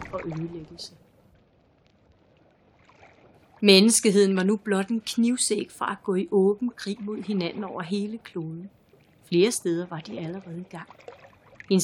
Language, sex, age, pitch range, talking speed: Danish, female, 30-49, 170-205 Hz, 135 wpm